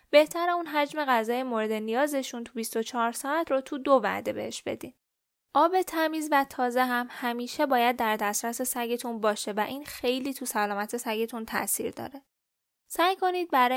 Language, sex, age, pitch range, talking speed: Persian, female, 10-29, 225-285 Hz, 160 wpm